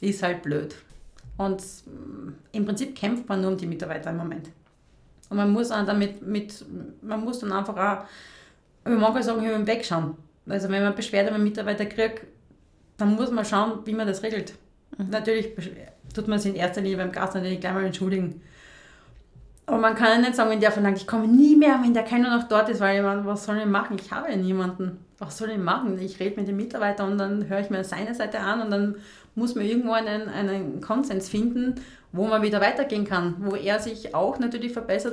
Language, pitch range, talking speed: German, 185-225 Hz, 215 wpm